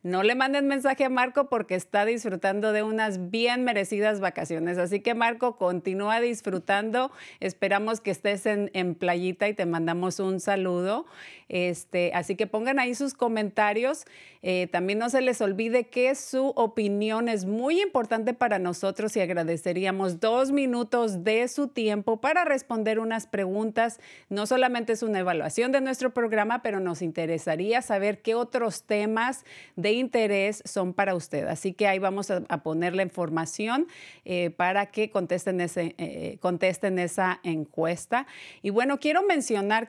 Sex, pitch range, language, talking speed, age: female, 185-230 Hz, Spanish, 155 wpm, 40-59